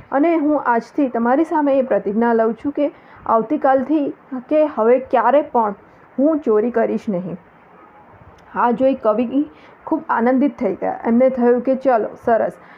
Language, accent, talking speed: Hindi, native, 135 wpm